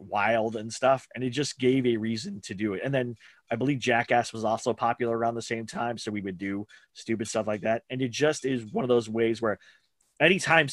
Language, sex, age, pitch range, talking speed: English, male, 30-49, 105-130 Hz, 235 wpm